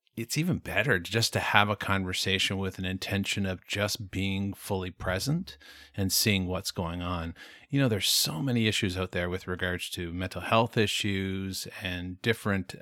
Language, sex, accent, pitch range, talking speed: English, male, American, 90-110 Hz, 175 wpm